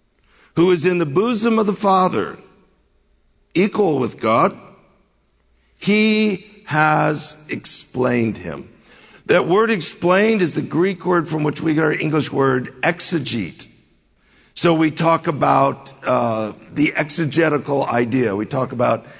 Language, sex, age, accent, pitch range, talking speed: English, male, 60-79, American, 145-190 Hz, 130 wpm